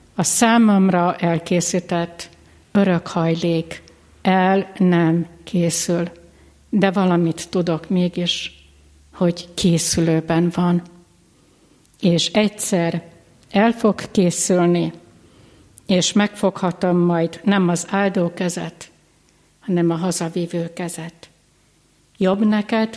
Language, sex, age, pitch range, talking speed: Hungarian, female, 60-79, 170-195 Hz, 85 wpm